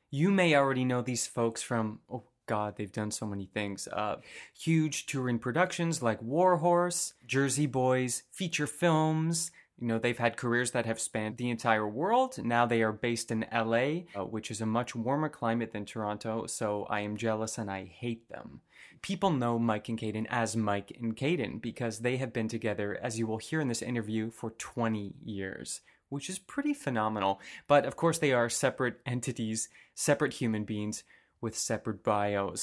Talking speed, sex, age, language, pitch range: 185 wpm, male, 30-49, English, 110-150 Hz